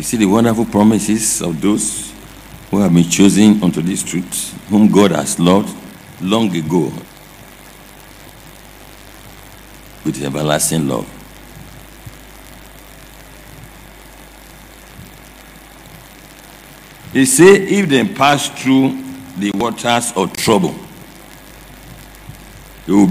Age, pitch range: 60-79, 100-140 Hz